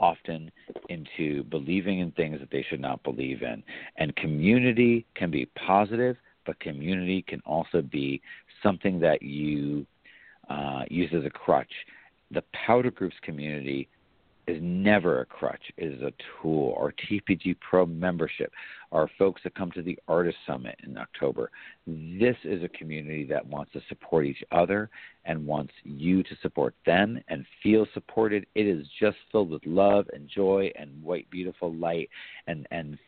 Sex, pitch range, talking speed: male, 80-100 Hz, 160 wpm